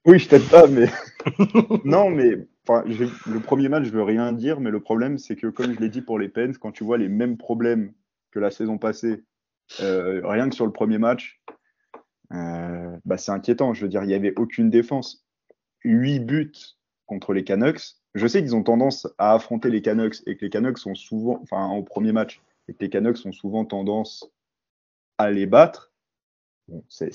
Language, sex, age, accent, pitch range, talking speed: French, male, 20-39, French, 105-125 Hz, 205 wpm